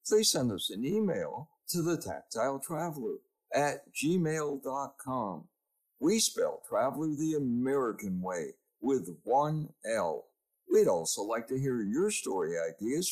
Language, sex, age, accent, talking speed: English, male, 60-79, American, 125 wpm